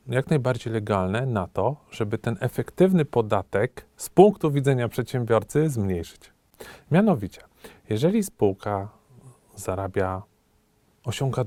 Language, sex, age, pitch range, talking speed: Polish, male, 40-59, 105-135 Hz, 100 wpm